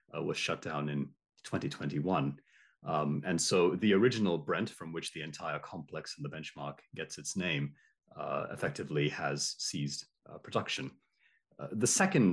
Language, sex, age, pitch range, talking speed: English, male, 30-49, 70-85 Hz, 155 wpm